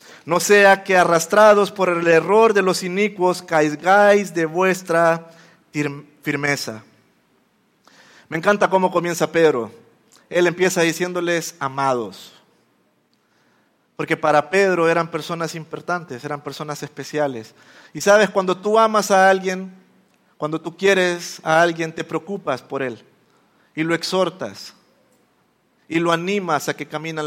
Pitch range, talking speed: 165-205 Hz, 125 wpm